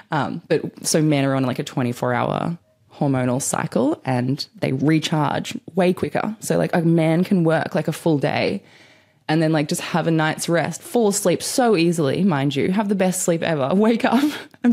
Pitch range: 145-195 Hz